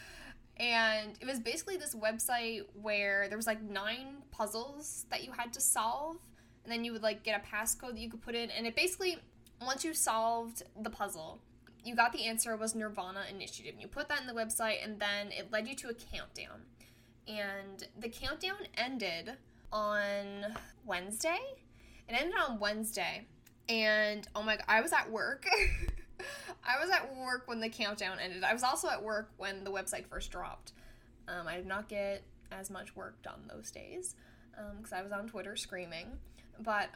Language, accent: English, American